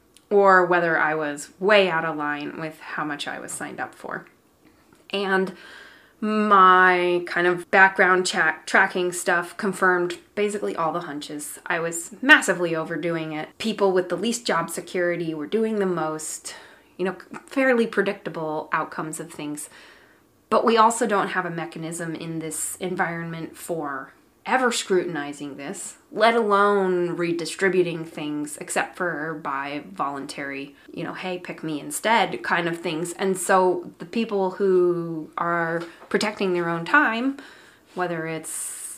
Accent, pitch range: American, 165-205 Hz